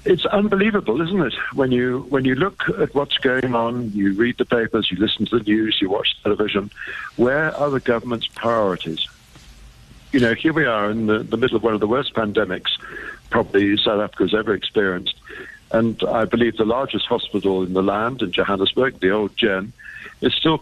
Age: 60-79